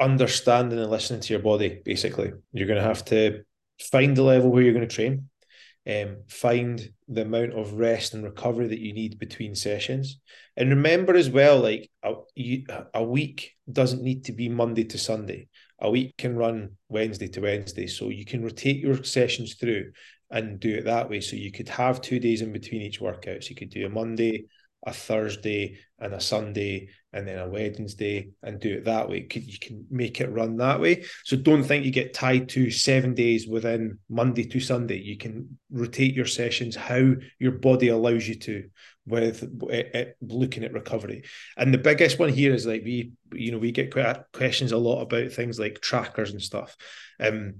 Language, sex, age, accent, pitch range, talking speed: English, male, 20-39, British, 110-125 Hz, 195 wpm